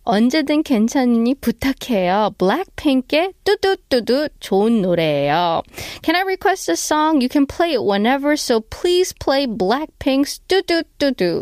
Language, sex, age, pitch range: Korean, female, 20-39, 195-300 Hz